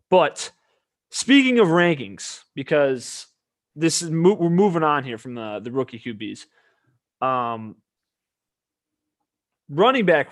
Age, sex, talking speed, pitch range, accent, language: 20-39, male, 115 wpm, 120-155 Hz, American, English